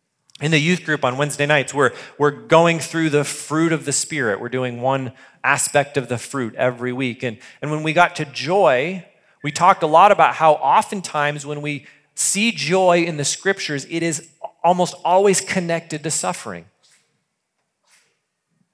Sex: male